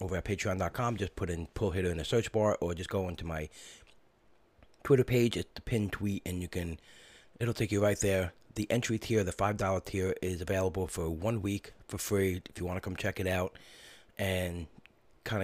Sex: male